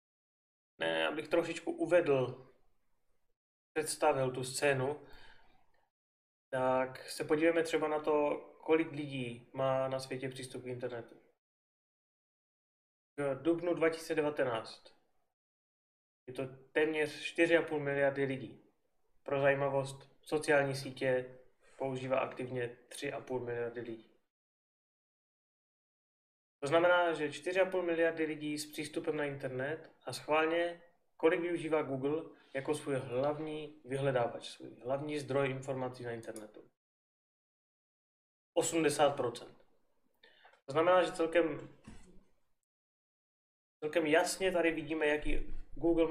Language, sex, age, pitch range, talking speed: Czech, male, 20-39, 130-165 Hz, 100 wpm